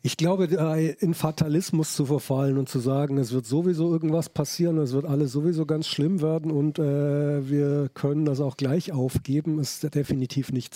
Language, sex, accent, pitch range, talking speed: German, male, German, 145-185 Hz, 180 wpm